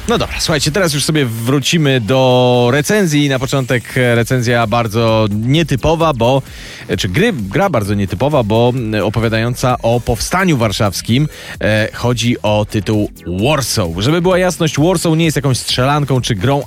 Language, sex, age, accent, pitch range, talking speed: Polish, male, 30-49, native, 110-145 Hz, 145 wpm